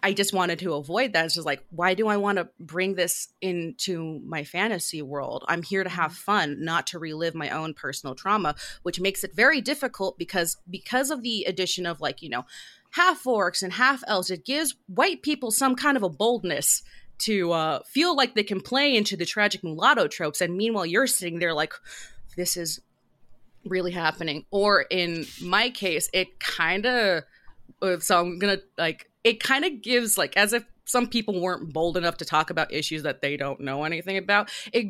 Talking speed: 200 wpm